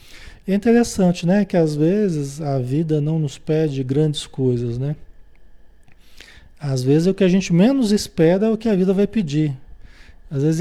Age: 40-59